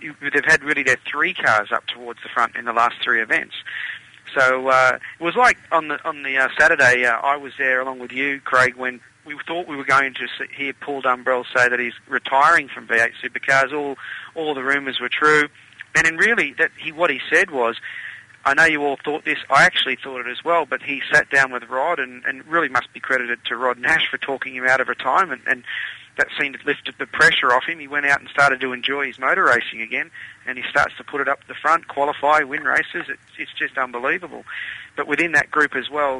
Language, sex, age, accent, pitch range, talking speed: English, male, 40-59, Australian, 125-145 Hz, 235 wpm